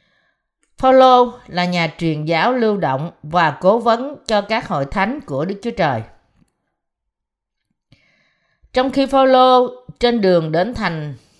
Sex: female